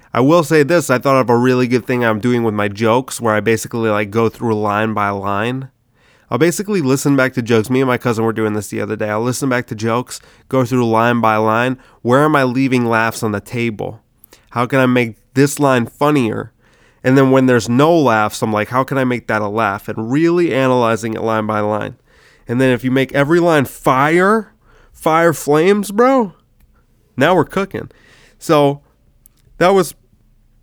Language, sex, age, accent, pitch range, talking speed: English, male, 20-39, American, 115-135 Hz, 205 wpm